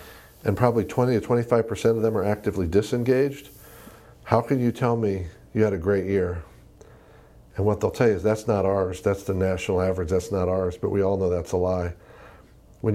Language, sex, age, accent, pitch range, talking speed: English, male, 50-69, American, 95-115 Hz, 205 wpm